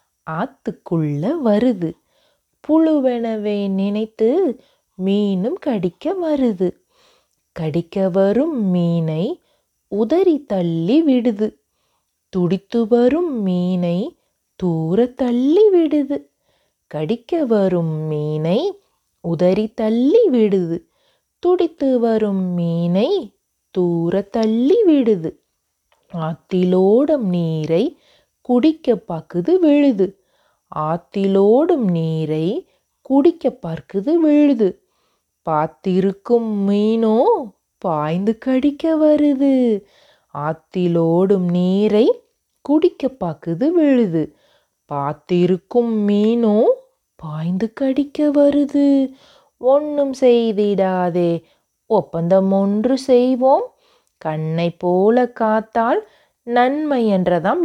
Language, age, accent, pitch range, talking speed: Tamil, 30-49, native, 180-280 Hz, 65 wpm